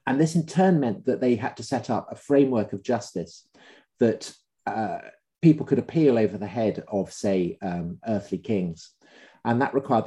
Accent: British